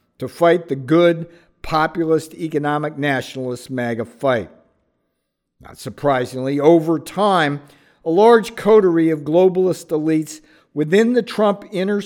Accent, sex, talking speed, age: American, male, 115 wpm, 50-69